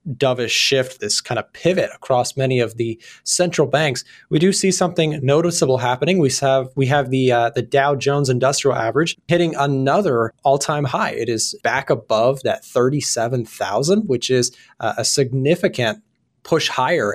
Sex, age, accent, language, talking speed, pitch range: male, 20-39, American, English, 170 wpm, 115-150 Hz